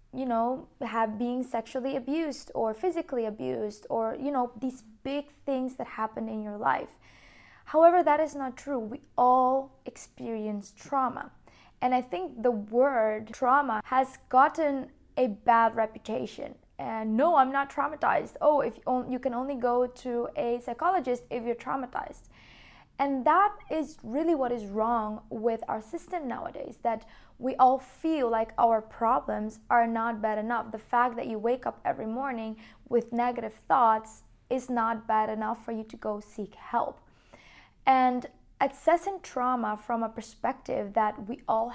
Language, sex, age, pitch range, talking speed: English, female, 20-39, 225-270 Hz, 160 wpm